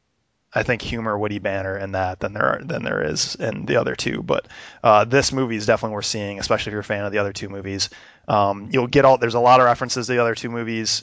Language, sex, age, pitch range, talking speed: English, male, 20-39, 105-125 Hz, 265 wpm